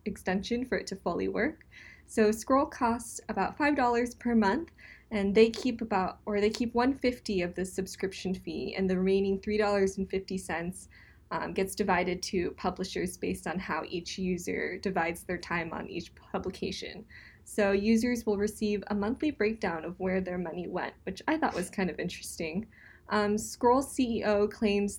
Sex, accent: female, American